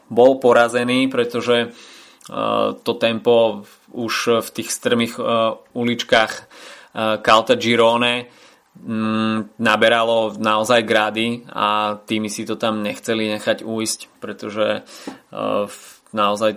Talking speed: 90 wpm